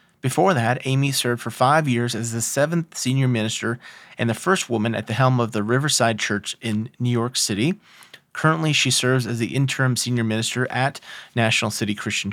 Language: English